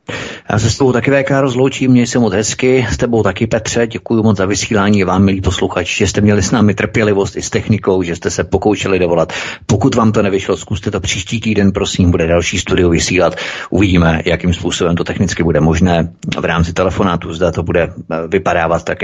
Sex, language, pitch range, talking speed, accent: male, Czech, 90-105 Hz, 200 wpm, native